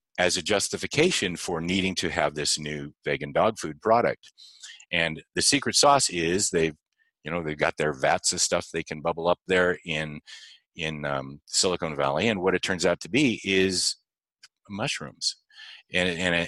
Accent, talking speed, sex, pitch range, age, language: American, 175 wpm, male, 85-125 Hz, 50-69, English